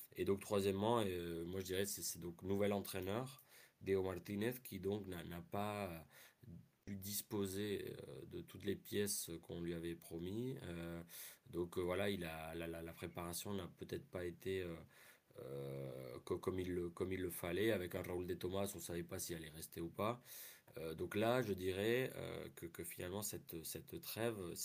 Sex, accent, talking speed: male, French, 180 wpm